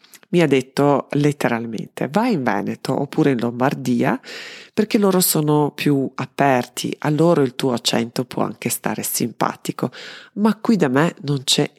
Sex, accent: female, native